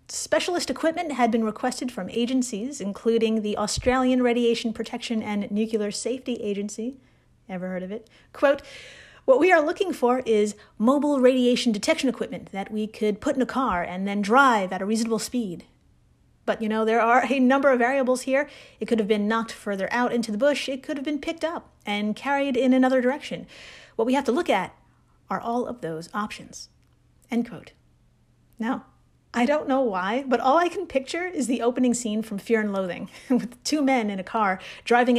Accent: American